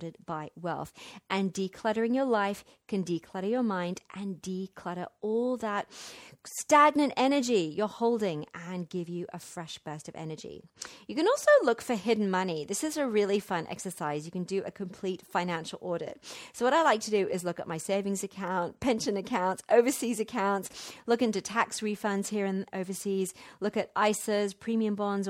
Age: 40-59